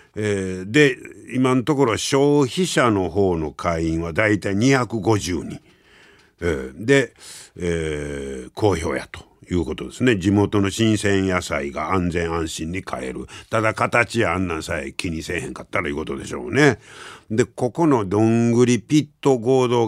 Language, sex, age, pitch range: Japanese, male, 60-79, 90-130 Hz